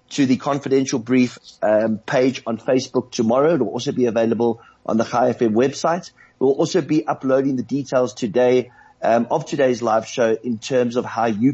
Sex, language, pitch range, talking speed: male, English, 115-135 Hz, 185 wpm